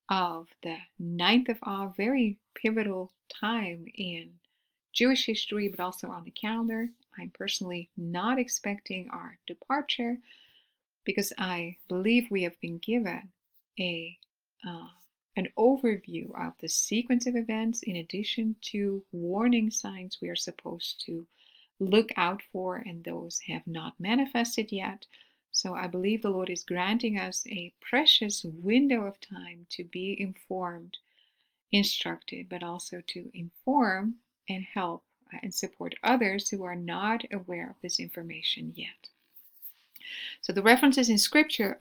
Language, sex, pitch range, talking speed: English, female, 180-230 Hz, 135 wpm